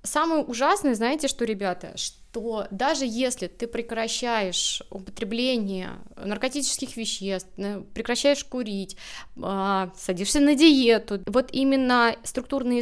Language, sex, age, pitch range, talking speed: Russian, female, 20-39, 200-255 Hz, 100 wpm